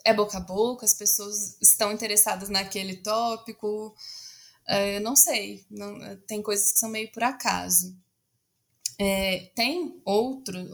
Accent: Brazilian